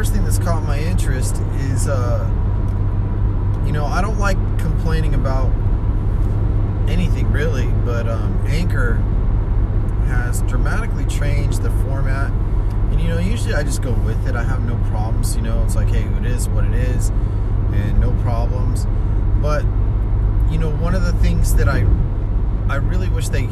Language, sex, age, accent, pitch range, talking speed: English, male, 30-49, American, 100-105 Hz, 160 wpm